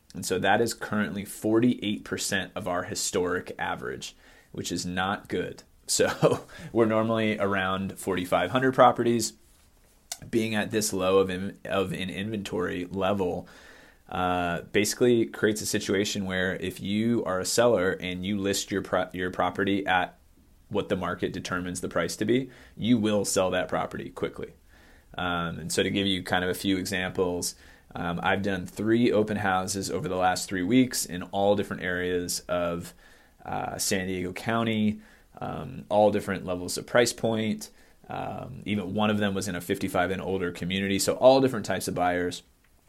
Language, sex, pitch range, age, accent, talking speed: English, male, 90-105 Hz, 20-39, American, 165 wpm